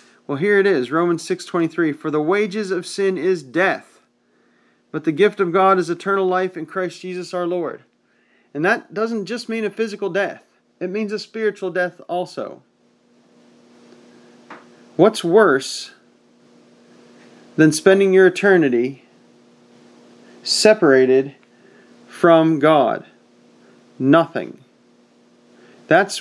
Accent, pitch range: American, 135-185 Hz